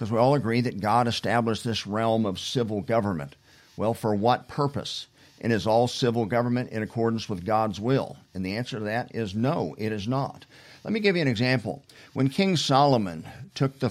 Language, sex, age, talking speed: English, male, 50-69, 200 wpm